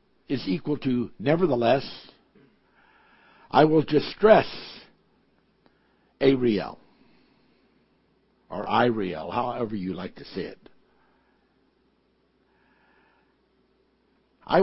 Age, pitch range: 60-79, 120-150 Hz